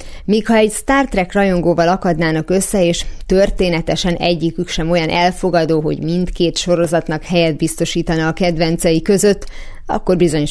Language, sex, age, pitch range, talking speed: Hungarian, female, 30-49, 160-195 Hz, 135 wpm